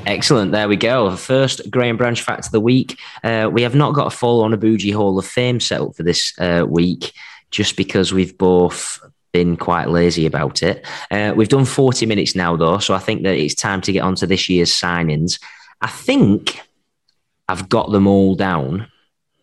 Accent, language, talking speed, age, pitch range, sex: British, English, 205 wpm, 20-39, 85-110 Hz, male